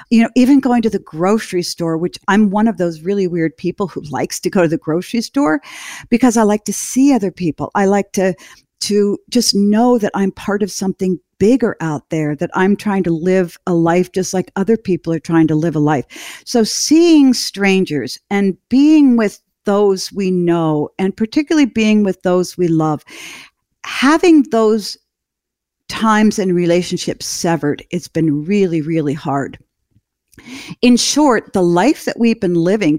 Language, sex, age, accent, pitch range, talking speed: English, female, 50-69, American, 170-220 Hz, 175 wpm